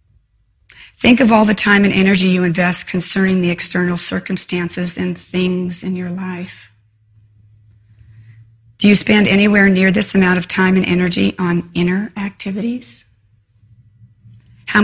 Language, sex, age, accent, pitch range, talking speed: English, female, 40-59, American, 120-195 Hz, 135 wpm